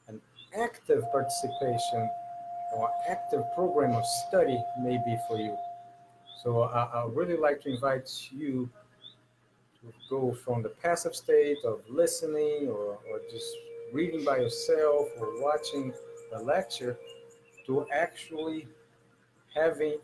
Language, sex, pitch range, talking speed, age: English, male, 120-175 Hz, 120 wpm, 50-69